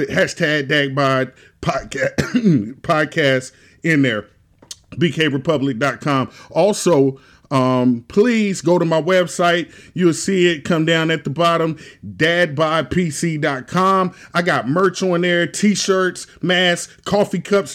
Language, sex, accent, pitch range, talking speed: English, male, American, 150-180 Hz, 110 wpm